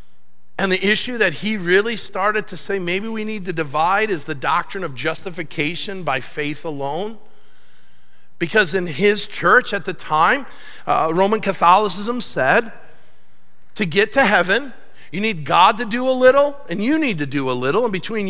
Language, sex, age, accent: English, male, 50-69, American